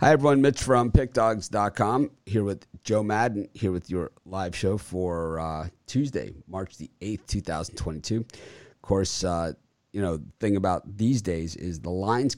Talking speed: 165 wpm